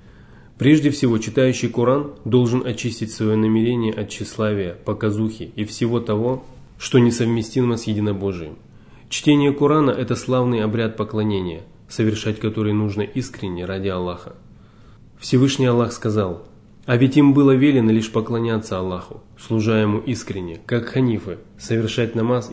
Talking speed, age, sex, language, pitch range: 130 wpm, 20-39, male, Russian, 105-125 Hz